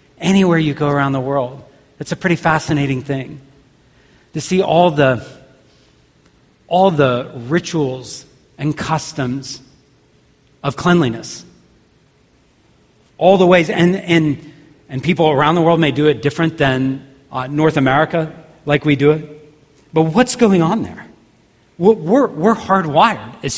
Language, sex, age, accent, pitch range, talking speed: English, male, 40-59, American, 130-160 Hz, 135 wpm